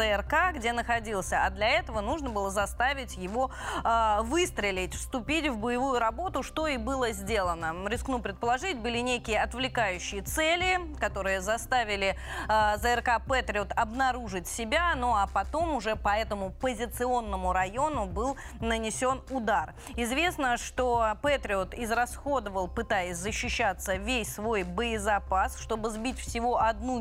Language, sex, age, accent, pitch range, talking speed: Russian, female, 20-39, native, 200-255 Hz, 125 wpm